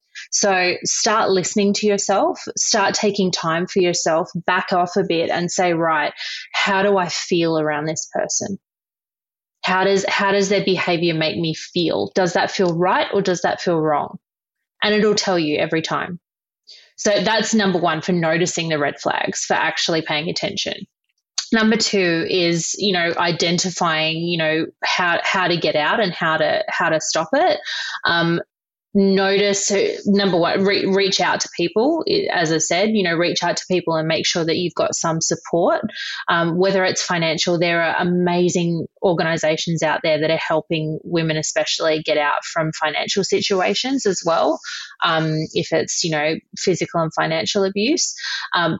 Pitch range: 165-200 Hz